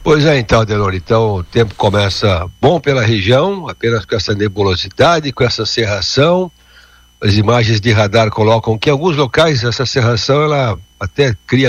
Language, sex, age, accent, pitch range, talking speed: Portuguese, male, 60-79, Brazilian, 105-135 Hz, 165 wpm